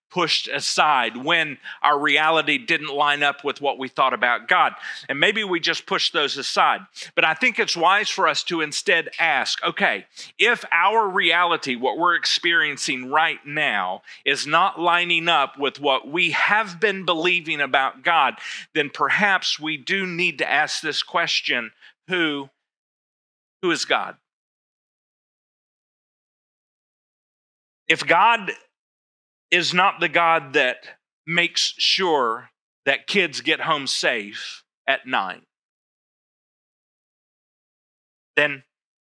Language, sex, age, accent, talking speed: English, male, 40-59, American, 125 wpm